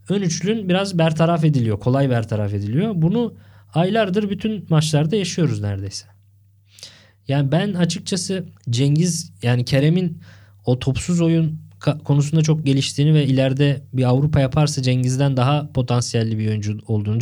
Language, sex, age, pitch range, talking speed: Turkish, male, 20-39, 120-155 Hz, 130 wpm